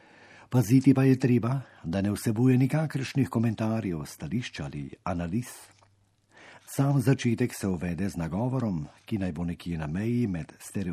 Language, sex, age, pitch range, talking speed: Italian, male, 50-69, 95-125 Hz, 110 wpm